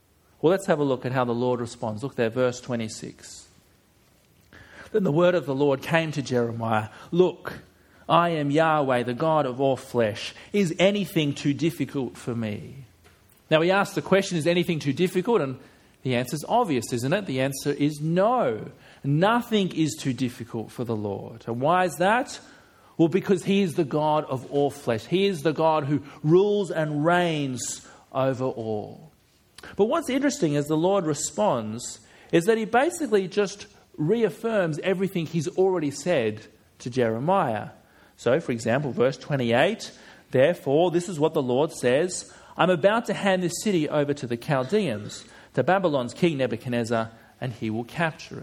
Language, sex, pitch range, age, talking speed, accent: English, male, 125-185 Hz, 40-59, 170 wpm, Australian